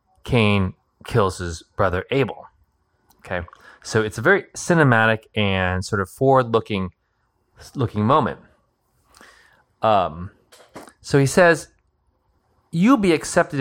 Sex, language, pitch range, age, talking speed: male, English, 95-140 Hz, 20-39, 105 wpm